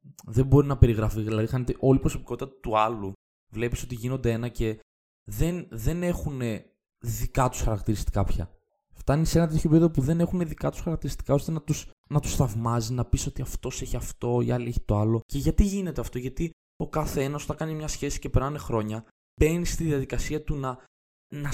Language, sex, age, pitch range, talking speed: Greek, male, 20-39, 115-155 Hz, 200 wpm